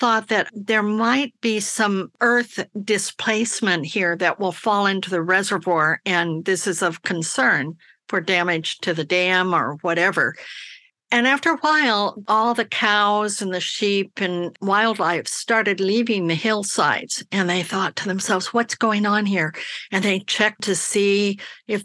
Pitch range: 185-235 Hz